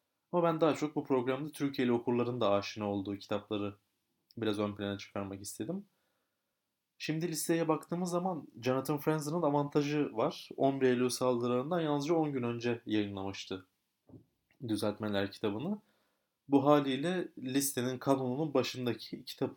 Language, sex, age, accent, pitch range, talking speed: Turkish, male, 30-49, native, 110-150 Hz, 125 wpm